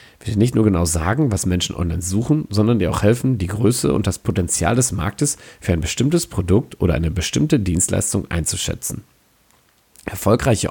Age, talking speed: 40-59, 170 wpm